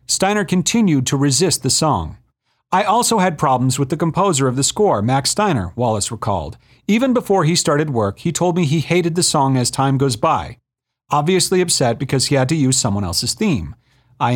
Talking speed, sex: 195 wpm, male